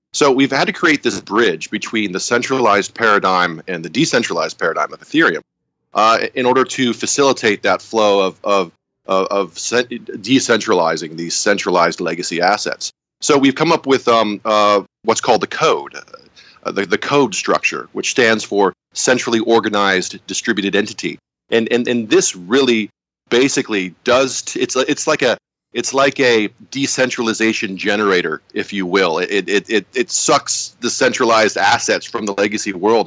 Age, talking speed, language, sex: 30-49, 160 wpm, English, male